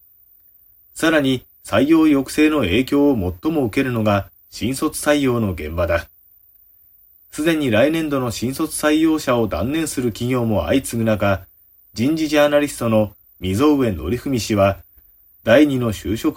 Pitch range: 90-130 Hz